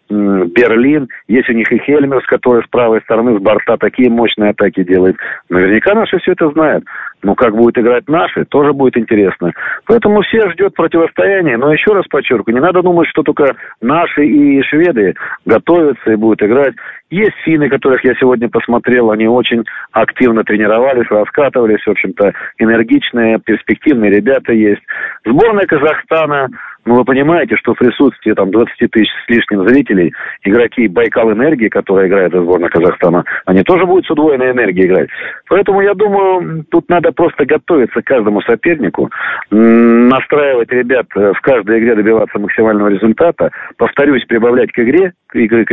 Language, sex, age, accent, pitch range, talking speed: Russian, male, 40-59, native, 110-160 Hz, 155 wpm